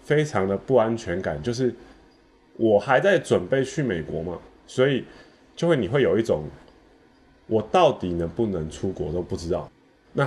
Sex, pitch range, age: male, 85-120 Hz, 20-39